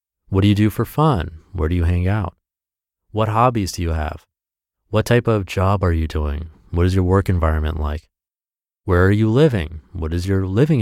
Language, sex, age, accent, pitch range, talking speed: English, male, 30-49, American, 80-115 Hz, 205 wpm